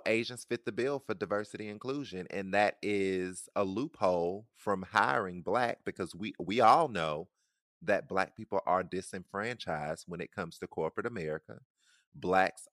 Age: 30-49